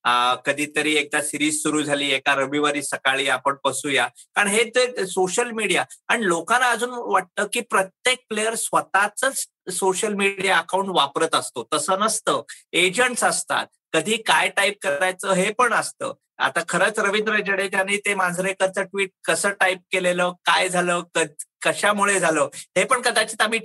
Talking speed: 145 wpm